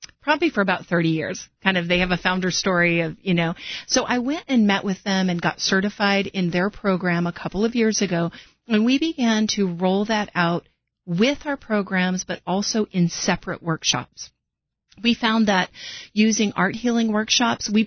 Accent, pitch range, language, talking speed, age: American, 180-225 Hz, English, 190 wpm, 40-59